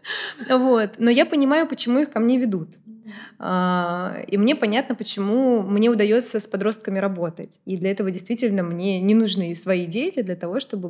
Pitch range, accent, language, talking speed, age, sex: 190-240 Hz, native, Russian, 160 wpm, 20-39, female